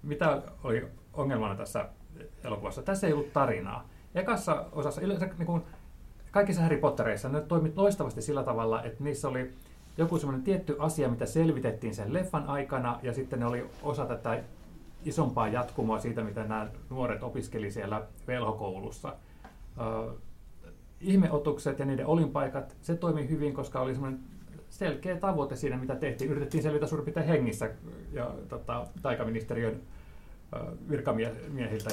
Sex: male